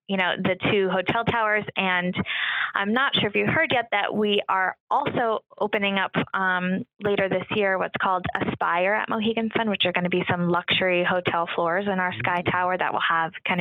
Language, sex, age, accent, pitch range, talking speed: English, female, 20-39, American, 175-200 Hz, 210 wpm